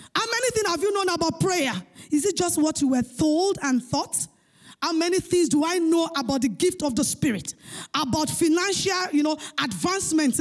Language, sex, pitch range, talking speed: English, female, 270-385 Hz, 185 wpm